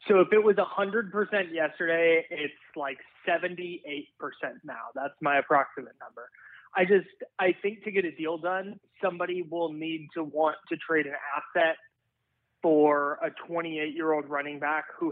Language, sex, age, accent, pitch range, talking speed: English, male, 20-39, American, 145-175 Hz, 180 wpm